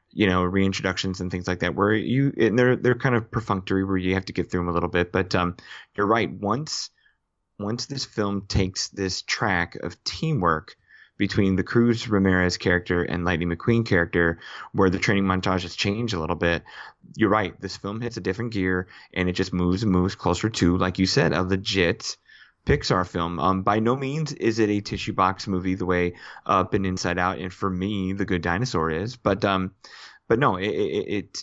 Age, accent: 20-39, American